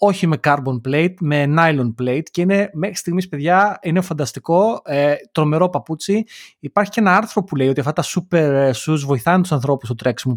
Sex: male